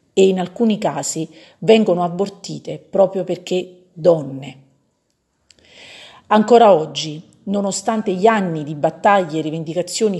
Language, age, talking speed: Italian, 40-59, 105 wpm